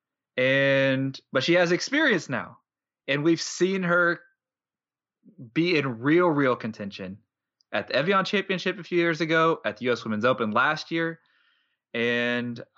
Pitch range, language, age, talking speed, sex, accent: 110-145 Hz, English, 20-39, 145 wpm, male, American